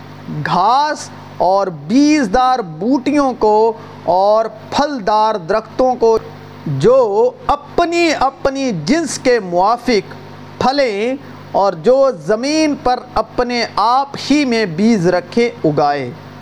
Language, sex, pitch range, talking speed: Urdu, male, 185-280 Hz, 105 wpm